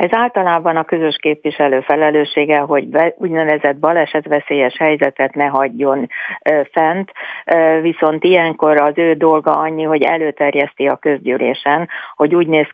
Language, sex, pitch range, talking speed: Hungarian, female, 145-165 Hz, 125 wpm